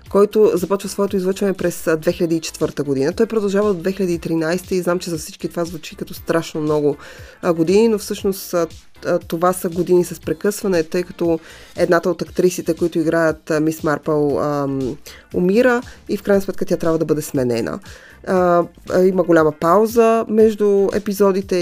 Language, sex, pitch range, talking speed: Bulgarian, female, 160-185 Hz, 160 wpm